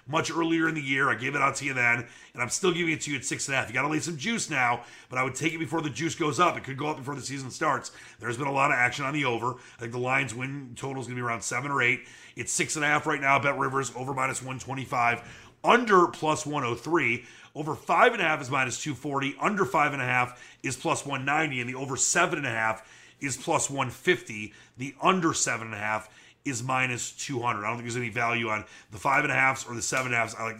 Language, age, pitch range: English, 30-49, 115-140 Hz